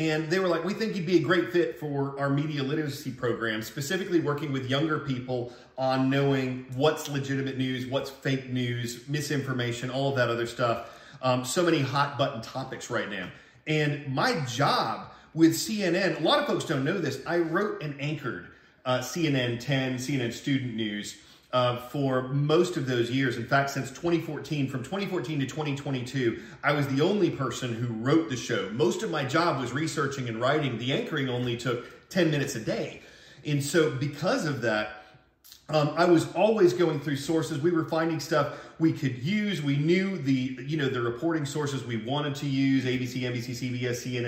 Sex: male